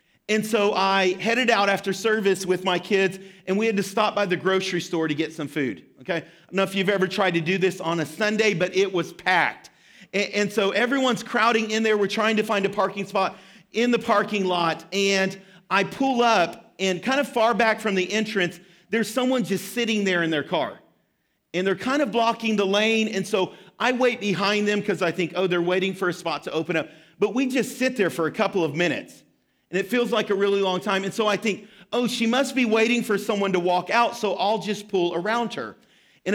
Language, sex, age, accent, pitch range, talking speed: English, male, 40-59, American, 180-220 Hz, 235 wpm